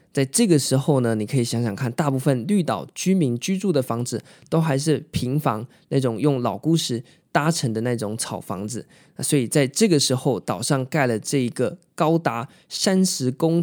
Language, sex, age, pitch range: Chinese, male, 20-39, 120-160 Hz